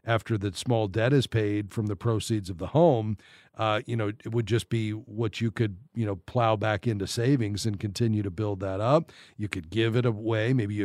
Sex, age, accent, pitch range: male, 40-59, American, 105-130 Hz